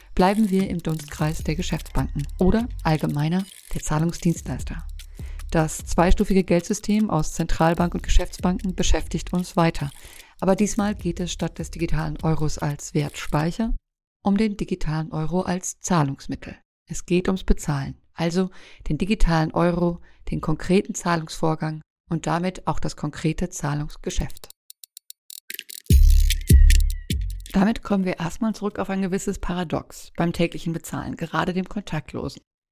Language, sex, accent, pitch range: German, female, German, 160-190 Hz